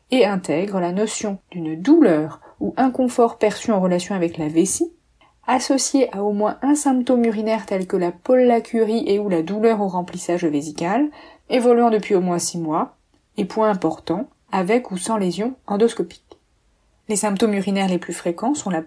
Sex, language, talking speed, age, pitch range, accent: female, French, 170 wpm, 30-49, 180-235 Hz, French